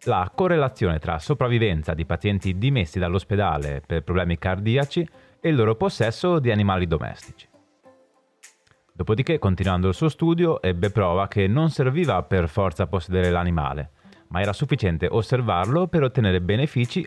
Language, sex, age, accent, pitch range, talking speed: Italian, male, 30-49, native, 90-140 Hz, 135 wpm